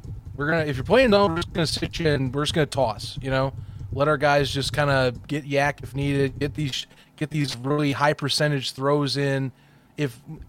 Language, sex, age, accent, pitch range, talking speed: English, male, 30-49, American, 130-155 Hz, 230 wpm